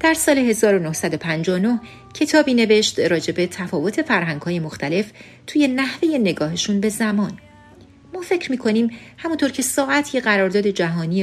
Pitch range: 180-255 Hz